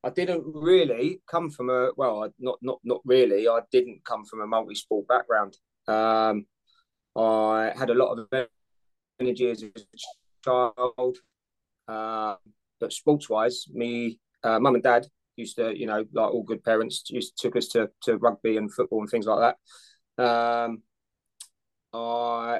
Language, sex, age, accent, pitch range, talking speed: English, male, 20-39, British, 115-130 Hz, 155 wpm